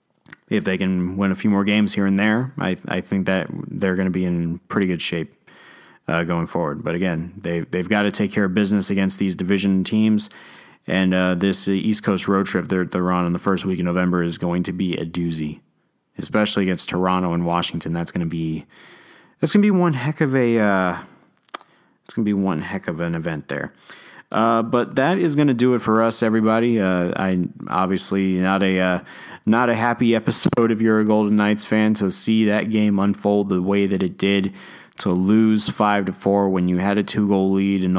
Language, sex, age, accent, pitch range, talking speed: English, male, 30-49, American, 90-105 Hz, 220 wpm